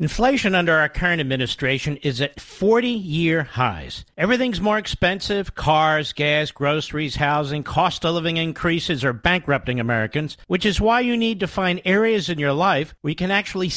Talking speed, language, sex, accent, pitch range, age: 165 wpm, English, male, American, 160-220 Hz, 50-69